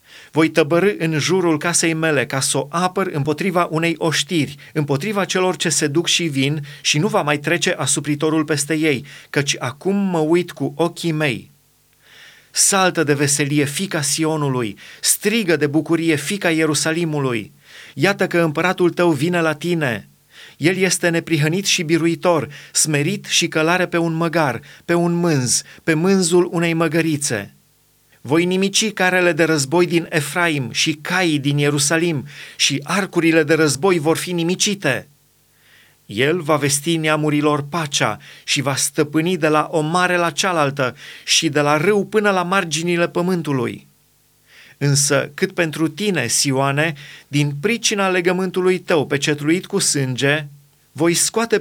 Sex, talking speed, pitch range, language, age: male, 145 wpm, 145-175 Hz, Romanian, 30-49